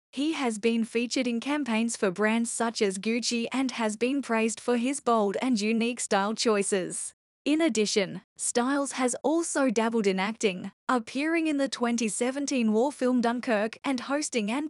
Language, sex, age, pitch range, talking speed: English, female, 10-29, 220-265 Hz, 165 wpm